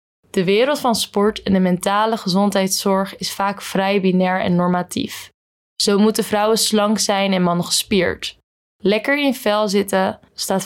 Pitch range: 180-210 Hz